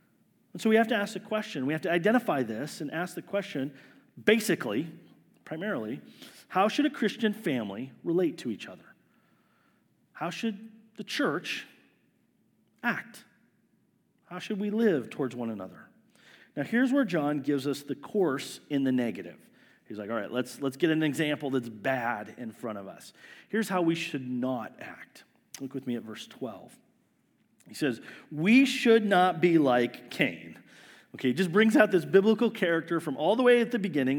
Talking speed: 175 wpm